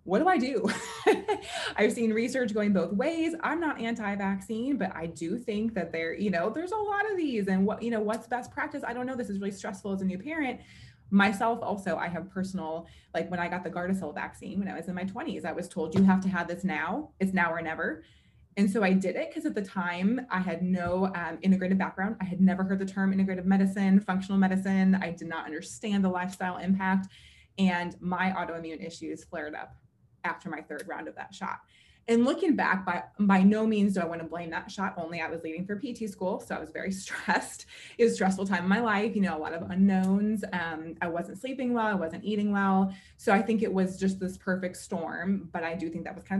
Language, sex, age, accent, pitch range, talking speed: English, female, 20-39, American, 175-210 Hz, 240 wpm